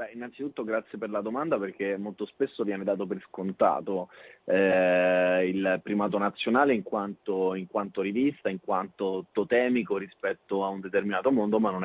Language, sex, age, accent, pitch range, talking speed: Italian, male, 30-49, native, 100-130 Hz, 150 wpm